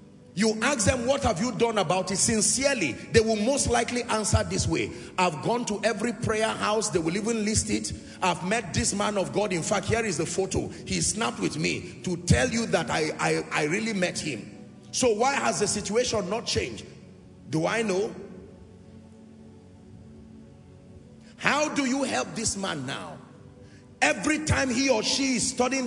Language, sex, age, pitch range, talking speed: English, male, 40-59, 185-245 Hz, 180 wpm